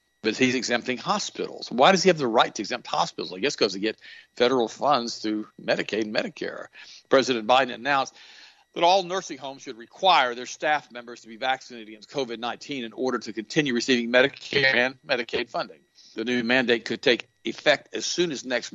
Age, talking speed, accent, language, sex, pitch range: 50-69, 190 wpm, American, English, male, 120-145 Hz